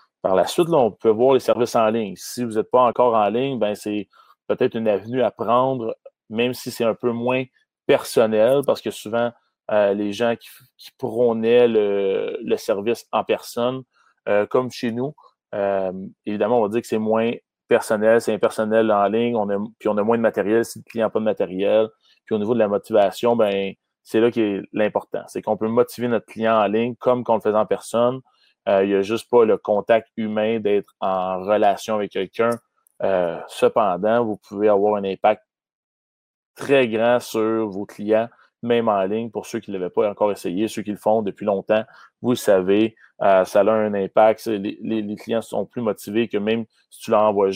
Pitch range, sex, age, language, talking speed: 105-120 Hz, male, 30-49, French, 210 wpm